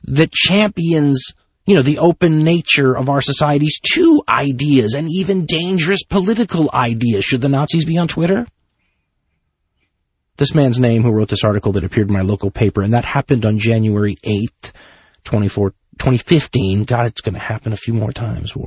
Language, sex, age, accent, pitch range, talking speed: English, male, 30-49, American, 110-165 Hz, 175 wpm